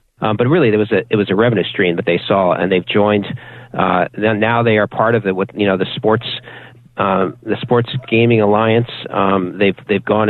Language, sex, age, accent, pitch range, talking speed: English, male, 40-59, American, 105-120 Hz, 215 wpm